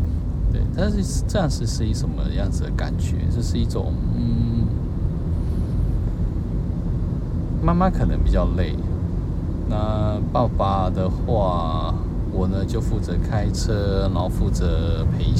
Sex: male